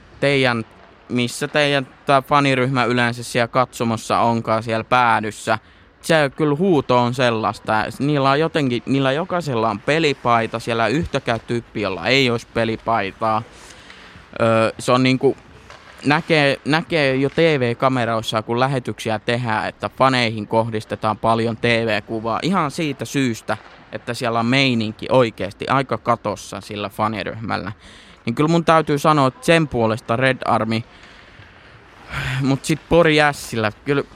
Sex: male